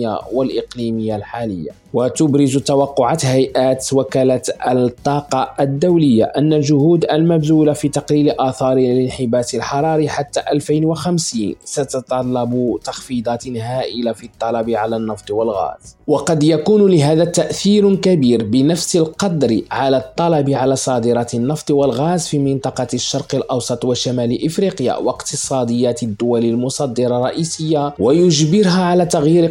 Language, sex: Arabic, male